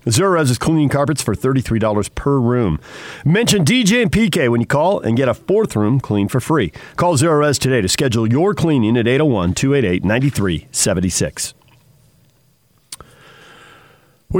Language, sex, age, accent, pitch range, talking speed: English, male, 50-69, American, 115-165 Hz, 145 wpm